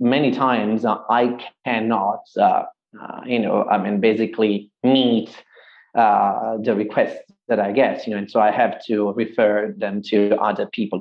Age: 30-49